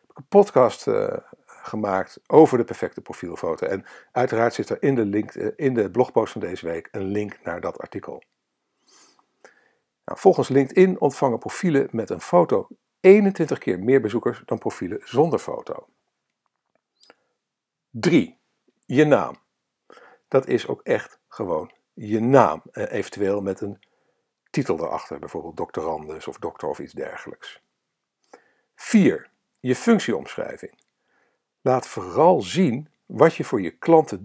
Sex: male